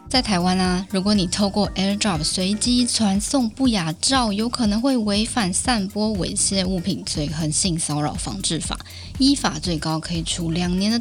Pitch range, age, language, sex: 170-225 Hz, 20-39, Chinese, female